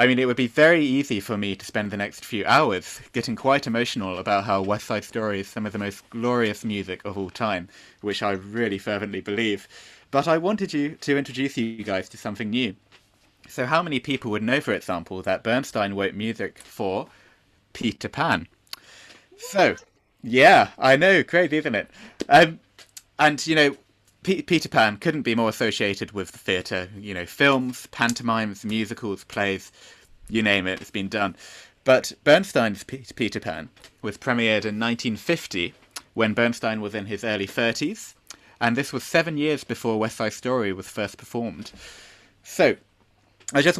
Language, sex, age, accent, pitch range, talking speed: English, male, 20-39, British, 100-130 Hz, 175 wpm